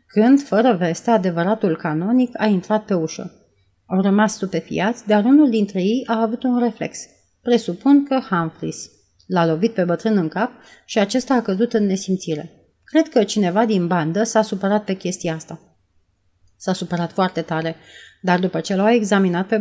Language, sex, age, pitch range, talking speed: Romanian, female, 30-49, 175-225 Hz, 170 wpm